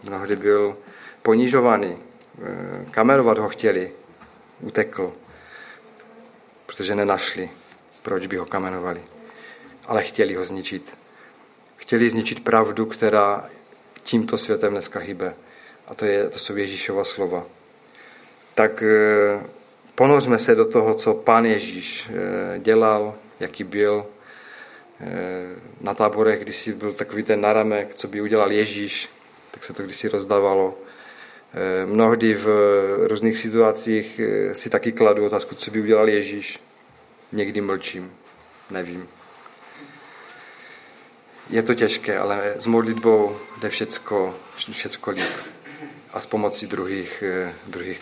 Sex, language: male, Czech